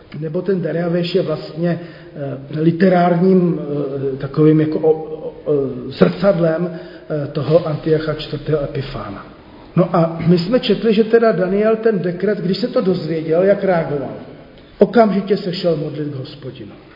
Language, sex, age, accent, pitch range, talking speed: Czech, male, 40-59, native, 160-195 Hz, 125 wpm